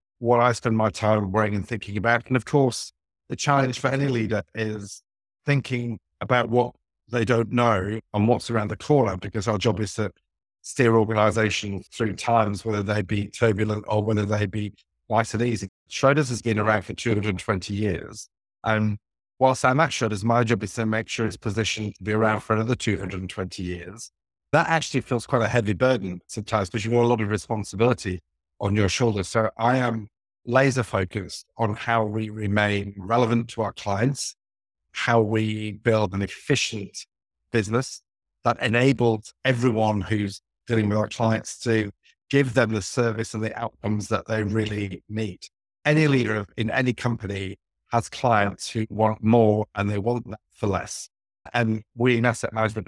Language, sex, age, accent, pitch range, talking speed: English, male, 50-69, British, 105-120 Hz, 175 wpm